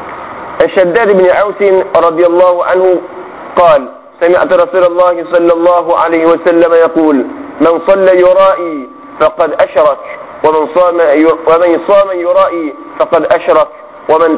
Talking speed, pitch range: 115 wpm, 155-190 Hz